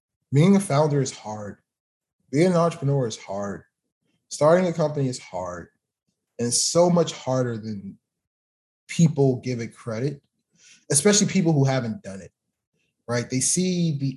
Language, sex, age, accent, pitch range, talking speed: English, male, 20-39, American, 120-150 Hz, 145 wpm